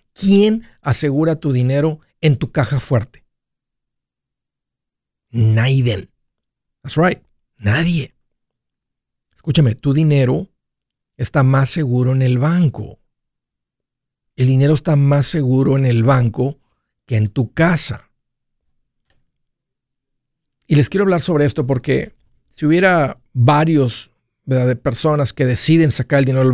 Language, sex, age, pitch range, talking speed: Spanish, male, 50-69, 130-155 Hz, 120 wpm